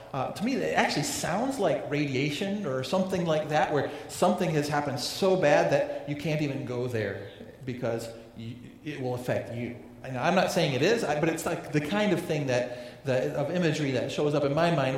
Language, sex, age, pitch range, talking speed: English, male, 40-59, 120-150 Hz, 215 wpm